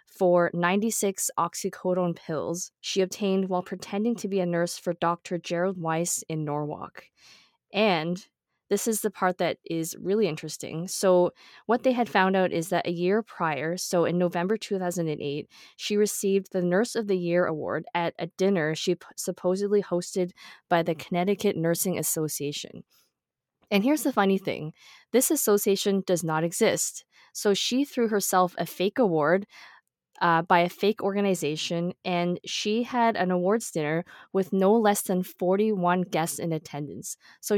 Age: 20-39